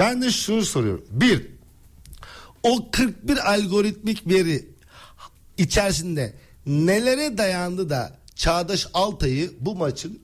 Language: Turkish